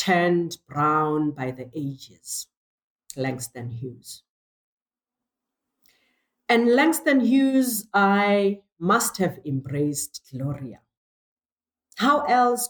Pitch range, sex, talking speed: 145-200 Hz, female, 80 wpm